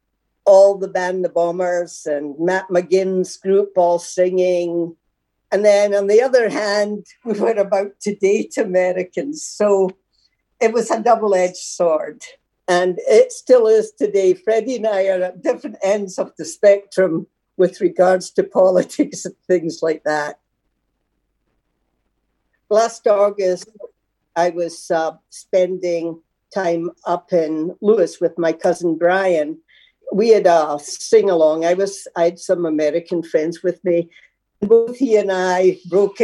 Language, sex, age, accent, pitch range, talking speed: English, female, 60-79, American, 175-205 Hz, 140 wpm